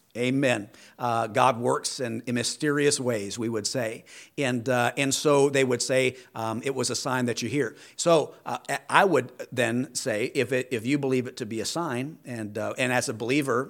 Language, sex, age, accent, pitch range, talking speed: English, male, 50-69, American, 115-135 Hz, 210 wpm